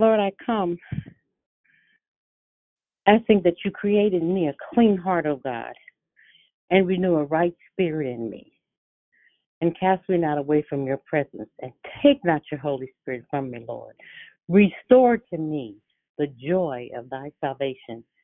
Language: English